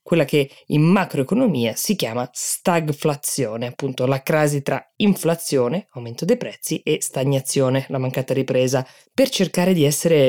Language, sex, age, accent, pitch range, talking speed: Italian, female, 20-39, native, 135-180 Hz, 140 wpm